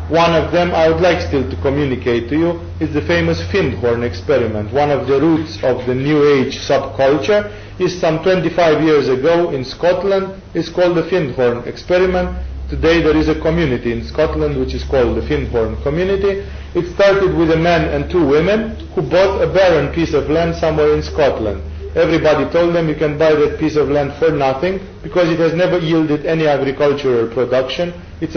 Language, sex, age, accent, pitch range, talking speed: English, male, 40-59, Serbian, 140-175 Hz, 190 wpm